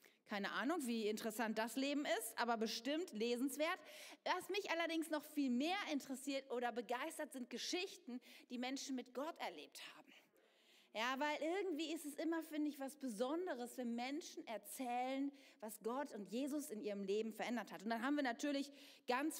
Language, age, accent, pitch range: German, 40-59, German, 225-295 Hz